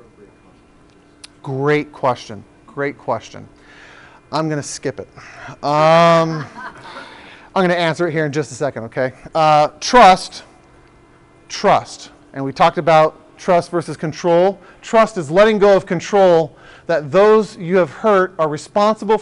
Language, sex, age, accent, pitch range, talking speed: English, male, 40-59, American, 150-180 Hz, 135 wpm